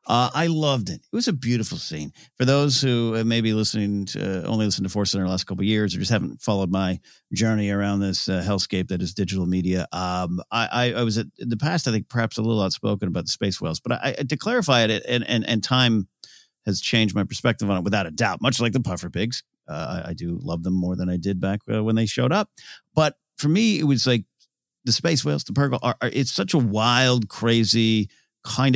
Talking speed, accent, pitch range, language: 255 wpm, American, 95-130 Hz, English